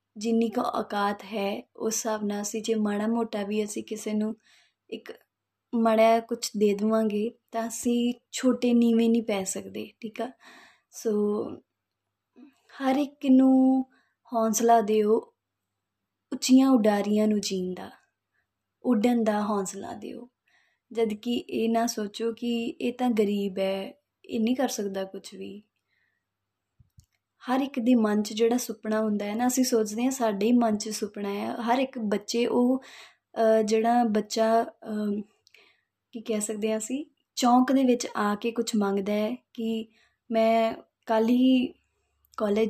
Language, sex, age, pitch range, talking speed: Punjabi, female, 20-39, 210-240 Hz, 140 wpm